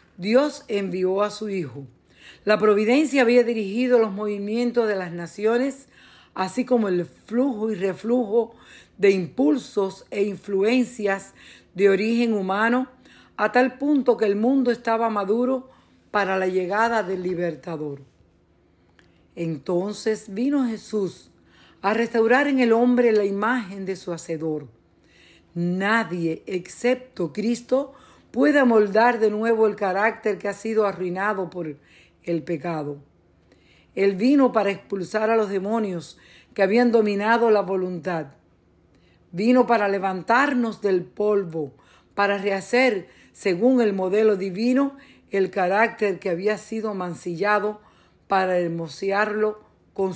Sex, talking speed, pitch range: female, 120 wpm, 180-230 Hz